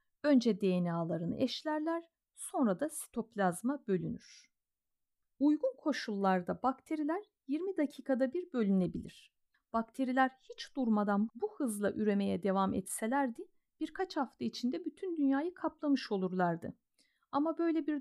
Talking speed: 105 wpm